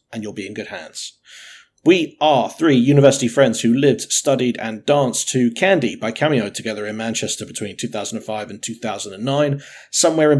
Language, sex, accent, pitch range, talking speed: English, male, British, 115-145 Hz, 165 wpm